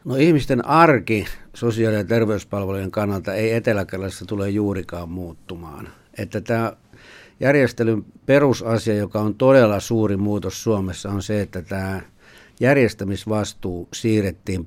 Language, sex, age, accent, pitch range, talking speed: Finnish, male, 60-79, native, 95-115 Hz, 115 wpm